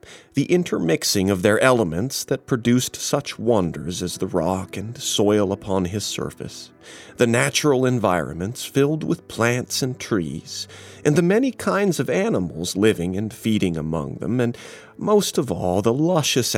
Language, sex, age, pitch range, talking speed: English, male, 40-59, 95-140 Hz, 150 wpm